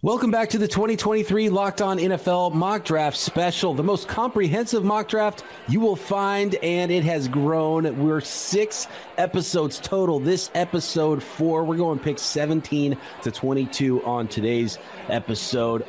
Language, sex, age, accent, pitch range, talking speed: English, male, 30-49, American, 125-170 Hz, 150 wpm